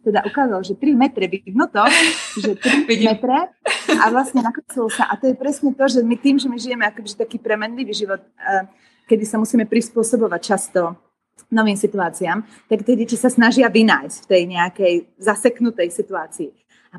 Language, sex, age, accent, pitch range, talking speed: Czech, female, 30-49, native, 195-255 Hz, 170 wpm